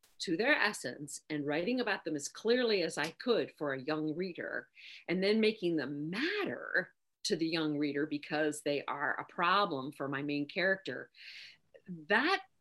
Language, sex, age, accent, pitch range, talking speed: English, female, 50-69, American, 160-230 Hz, 165 wpm